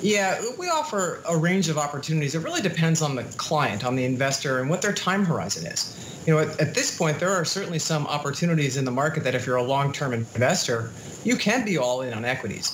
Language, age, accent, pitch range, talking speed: English, 40-59, American, 135-165 Hz, 230 wpm